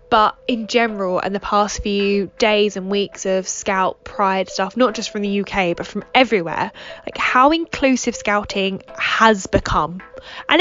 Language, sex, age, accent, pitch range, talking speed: English, female, 10-29, British, 185-245 Hz, 165 wpm